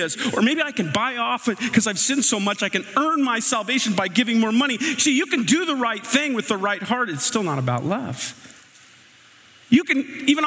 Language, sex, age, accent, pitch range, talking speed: English, male, 40-59, American, 155-255 Hz, 225 wpm